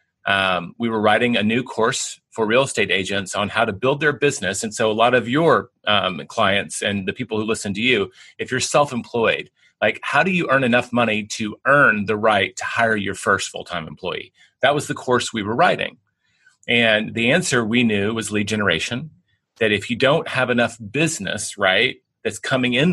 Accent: American